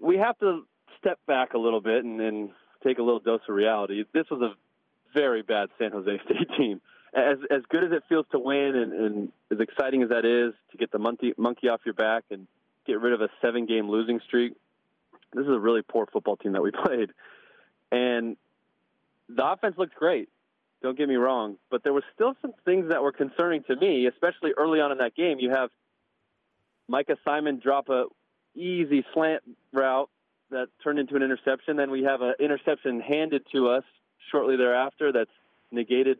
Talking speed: 195 wpm